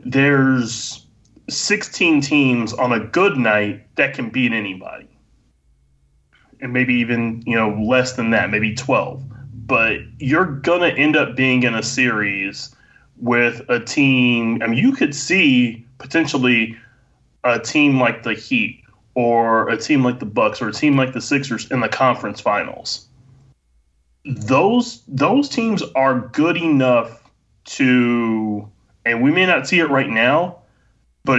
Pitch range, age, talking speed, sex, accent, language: 110-140 Hz, 30-49, 145 wpm, male, American, English